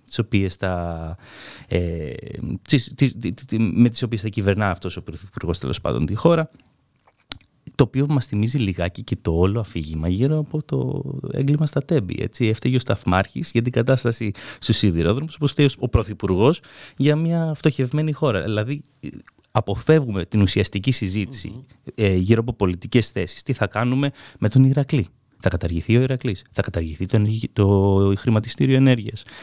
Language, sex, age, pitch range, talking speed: Greek, male, 30-49, 95-130 Hz, 150 wpm